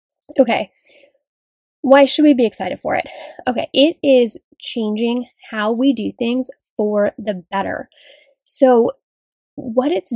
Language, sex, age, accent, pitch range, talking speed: English, female, 10-29, American, 215-280 Hz, 130 wpm